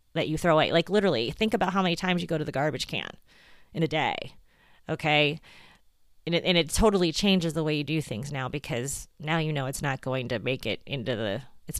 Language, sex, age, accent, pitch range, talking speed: English, female, 30-49, American, 145-175 Hz, 235 wpm